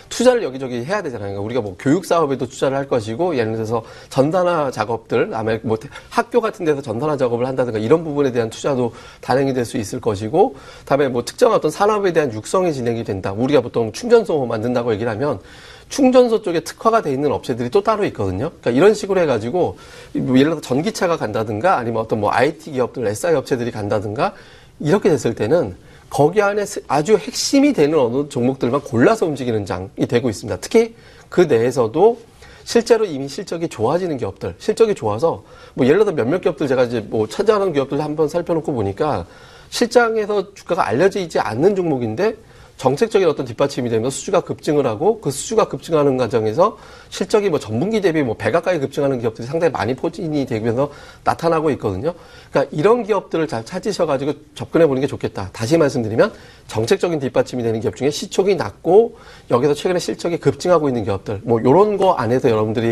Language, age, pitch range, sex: Korean, 30-49, 120-185 Hz, male